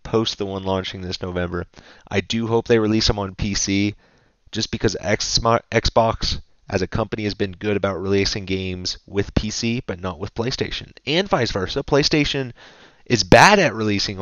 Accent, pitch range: American, 100-120 Hz